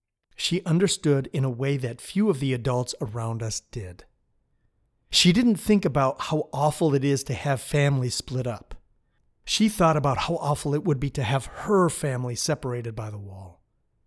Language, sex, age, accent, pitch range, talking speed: English, male, 30-49, American, 115-150 Hz, 180 wpm